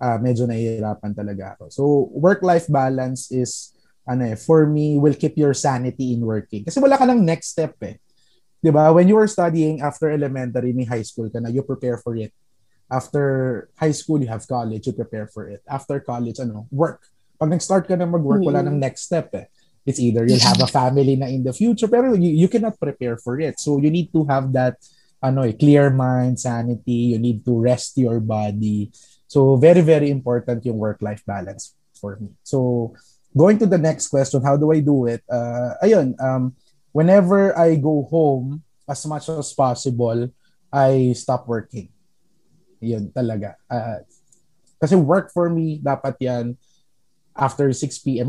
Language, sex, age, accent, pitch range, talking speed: English, male, 20-39, Filipino, 120-155 Hz, 175 wpm